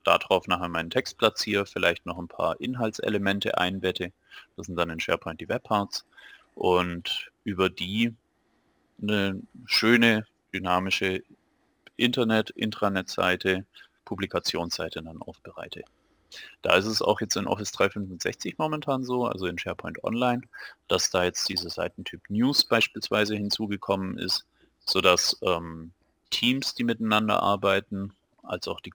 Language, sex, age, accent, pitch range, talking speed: German, male, 30-49, German, 90-105 Hz, 130 wpm